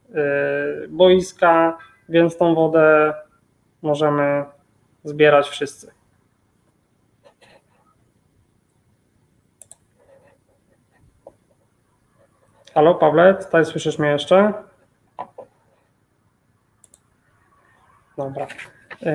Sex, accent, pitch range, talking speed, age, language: male, native, 155-170 Hz, 45 wpm, 20-39, Polish